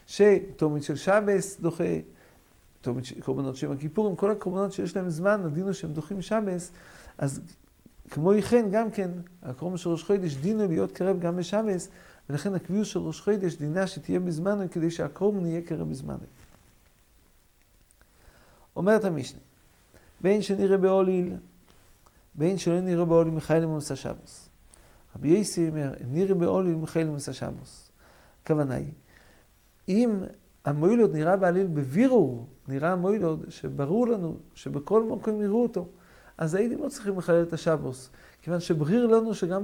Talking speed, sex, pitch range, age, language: 105 wpm, male, 165-200 Hz, 50-69, English